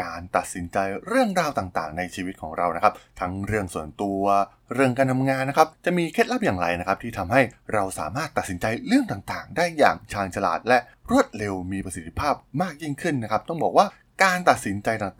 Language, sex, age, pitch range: Thai, male, 20-39, 95-140 Hz